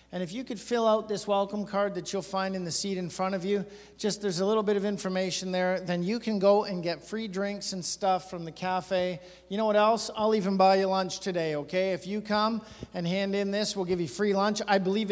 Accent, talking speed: American, 260 wpm